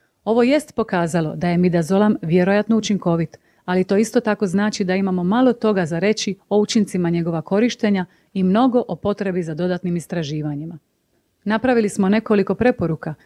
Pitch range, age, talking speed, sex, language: 175-220 Hz, 30-49, 155 wpm, female, Croatian